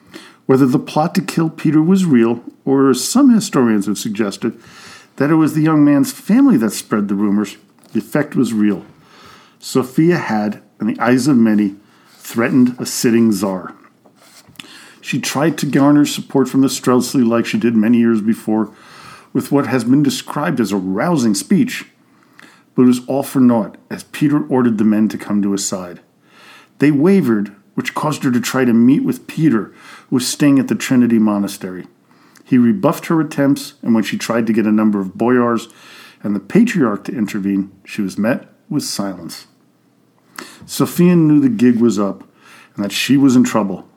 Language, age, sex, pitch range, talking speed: English, 50-69, male, 105-145 Hz, 180 wpm